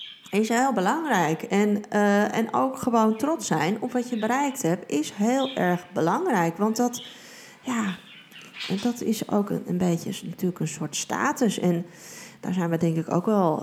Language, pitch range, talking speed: Dutch, 170-225 Hz, 180 wpm